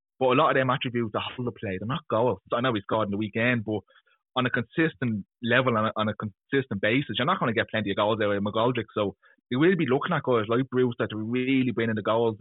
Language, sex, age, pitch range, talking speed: English, male, 20-39, 110-135 Hz, 270 wpm